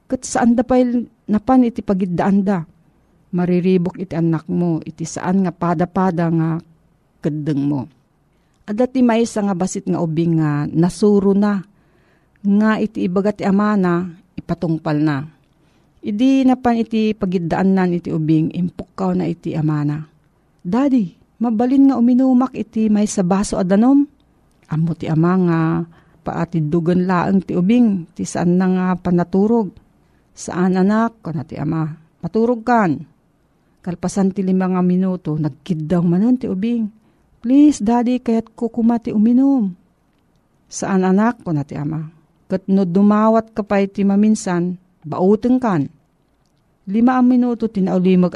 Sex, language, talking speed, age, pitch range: female, Filipino, 140 wpm, 50-69, 165-230 Hz